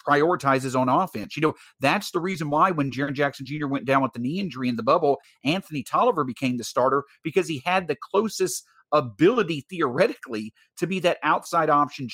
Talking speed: 195 wpm